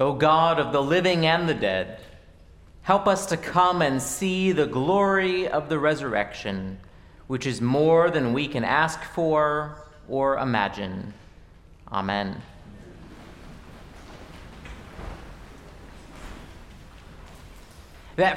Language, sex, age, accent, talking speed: English, male, 40-59, American, 100 wpm